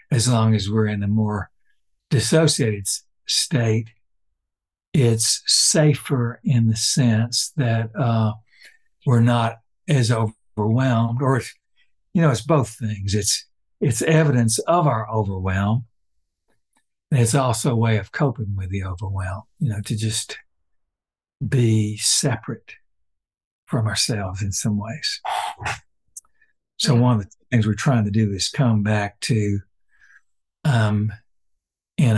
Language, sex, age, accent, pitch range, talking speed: English, male, 60-79, American, 100-125 Hz, 130 wpm